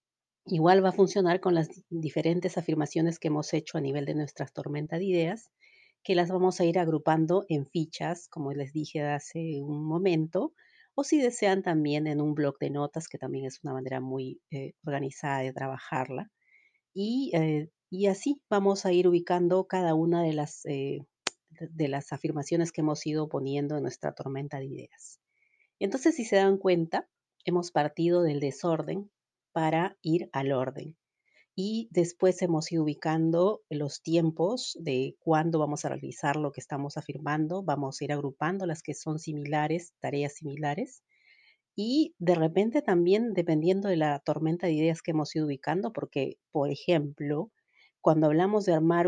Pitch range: 145-180 Hz